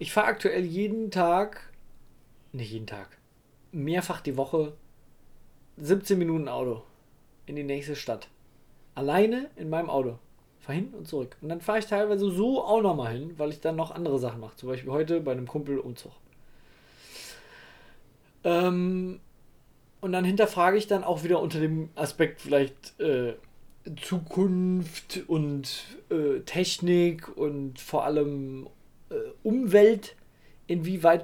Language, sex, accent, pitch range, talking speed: German, male, German, 145-185 Hz, 140 wpm